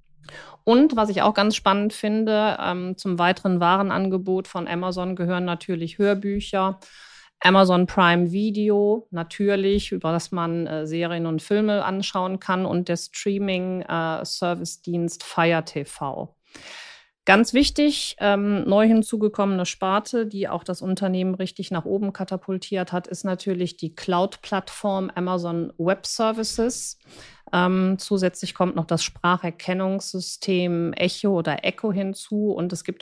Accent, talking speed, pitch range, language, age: German, 120 wpm, 175-200 Hz, German, 40-59